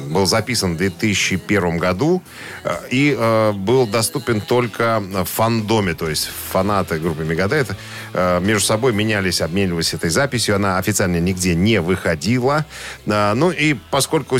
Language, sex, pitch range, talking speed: Russian, male, 95-115 Hz, 135 wpm